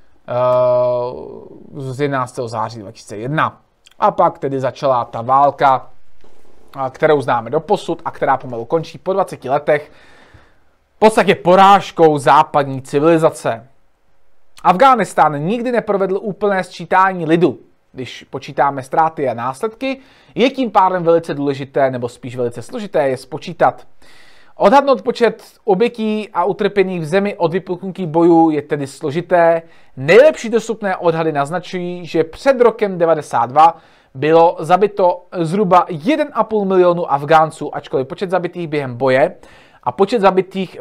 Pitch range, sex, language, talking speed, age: 140-195 Hz, male, Czech, 125 wpm, 30-49